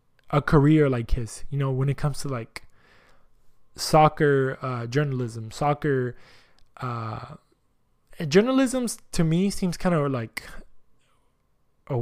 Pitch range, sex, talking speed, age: 140-185 Hz, male, 120 wpm, 20-39